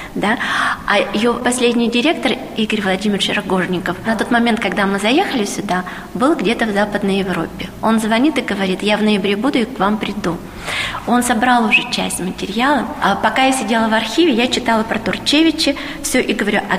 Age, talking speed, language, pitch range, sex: 20-39, 180 wpm, Russian, 200-255 Hz, female